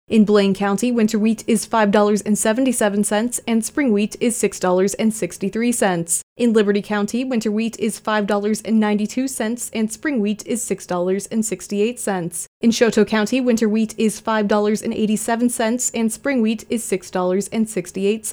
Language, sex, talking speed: English, female, 115 wpm